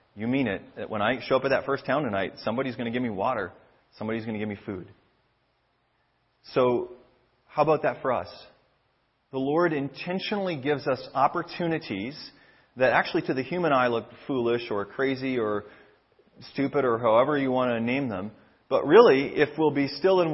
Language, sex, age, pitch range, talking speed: English, male, 30-49, 120-145 Hz, 185 wpm